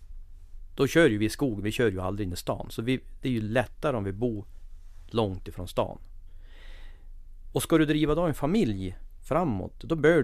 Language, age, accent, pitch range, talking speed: English, 40-59, Swedish, 90-130 Hz, 205 wpm